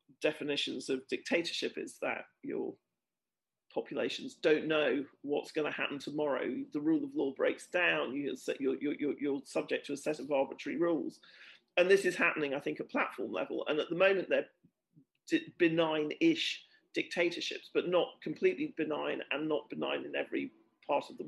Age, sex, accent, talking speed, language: 40-59, male, British, 165 wpm, Turkish